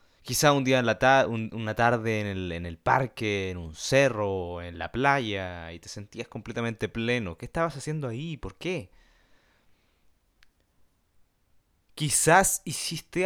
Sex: male